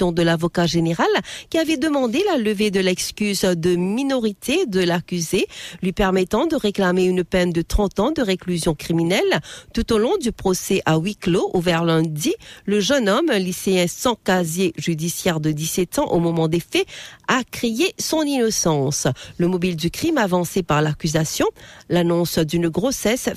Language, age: English, 50-69